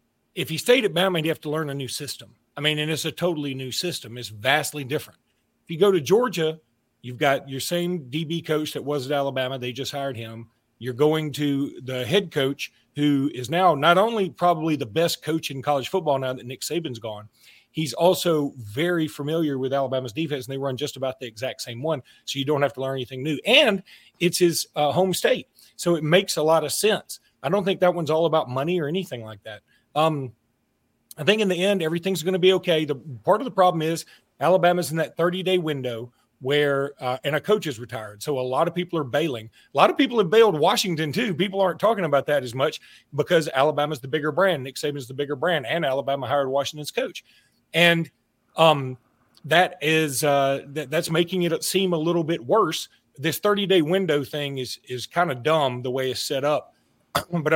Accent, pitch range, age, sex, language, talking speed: American, 135-175 Hz, 40-59, male, English, 220 wpm